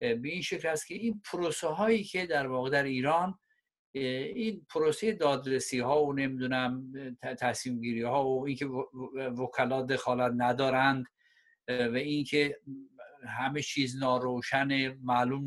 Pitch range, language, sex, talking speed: 125-175 Hz, Persian, male, 130 wpm